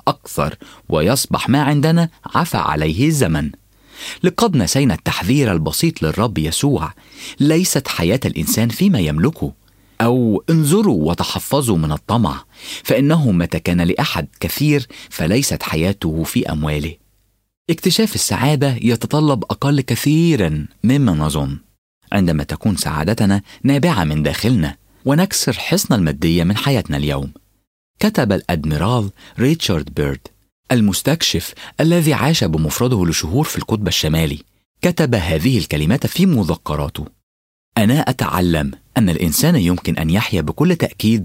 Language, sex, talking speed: English, male, 110 wpm